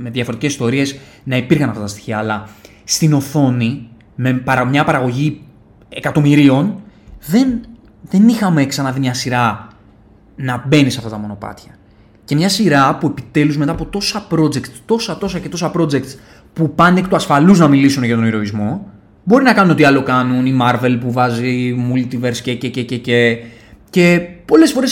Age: 20-39